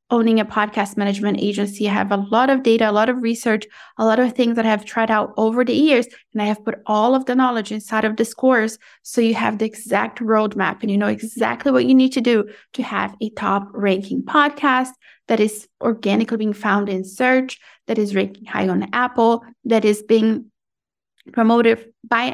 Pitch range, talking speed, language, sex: 210-235 Hz, 205 wpm, English, female